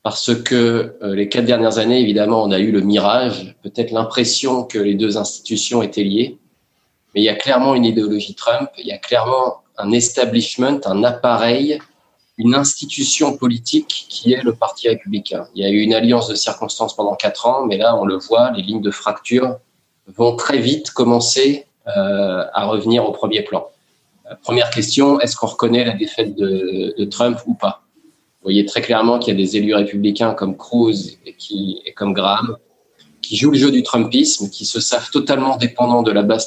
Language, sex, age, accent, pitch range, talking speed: French, male, 20-39, French, 105-130 Hz, 190 wpm